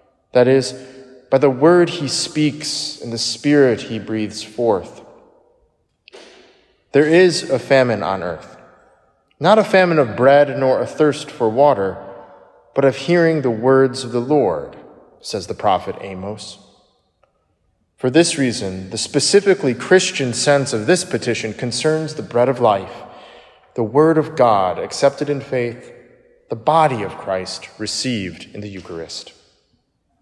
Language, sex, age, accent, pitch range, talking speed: English, male, 20-39, American, 120-155 Hz, 140 wpm